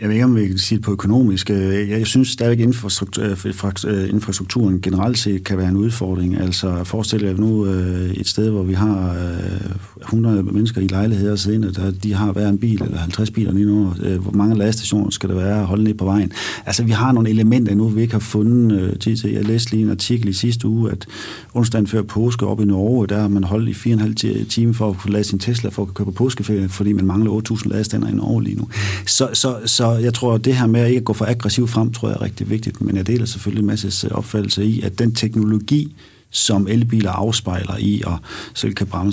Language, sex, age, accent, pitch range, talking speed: Danish, male, 40-59, native, 95-110 Hz, 225 wpm